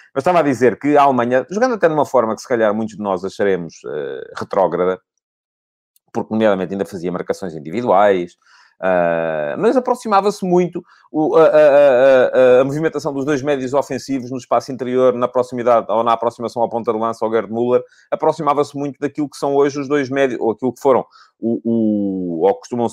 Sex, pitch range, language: male, 105-145 Hz, Portuguese